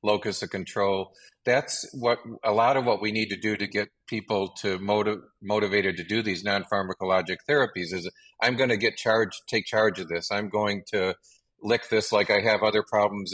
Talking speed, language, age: 200 wpm, English, 50-69